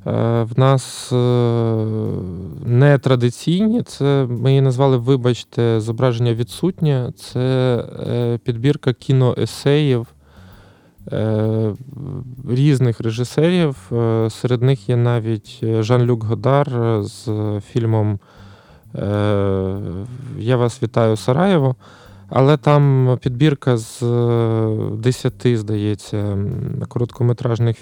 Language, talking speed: Ukrainian, 70 wpm